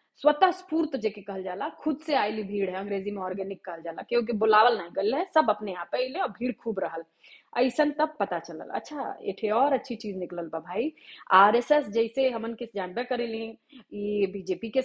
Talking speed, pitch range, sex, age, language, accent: 115 wpm, 200-275 Hz, female, 30-49, Hindi, native